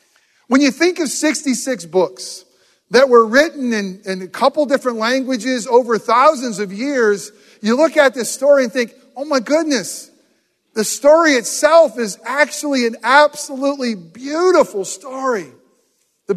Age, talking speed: 40-59, 145 wpm